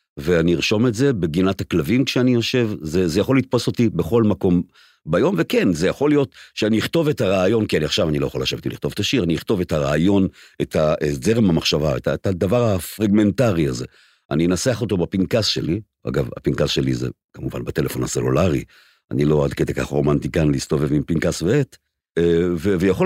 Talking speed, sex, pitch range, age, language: 180 wpm, male, 80-115 Hz, 50-69, Hebrew